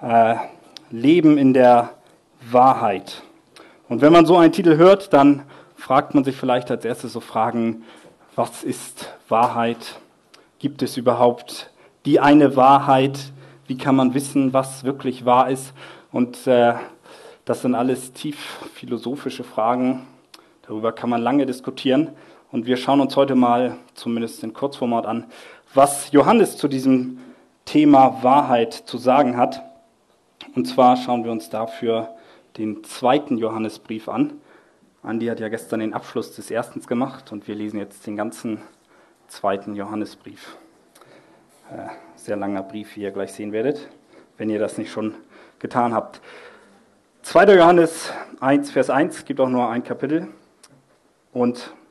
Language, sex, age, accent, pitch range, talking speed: German, male, 40-59, German, 115-140 Hz, 145 wpm